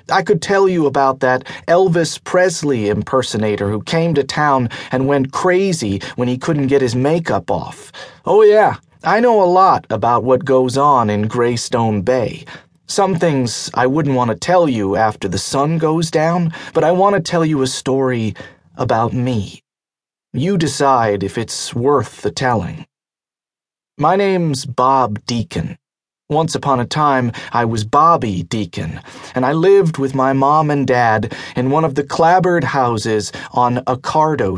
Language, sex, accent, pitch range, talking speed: English, male, American, 125-165 Hz, 165 wpm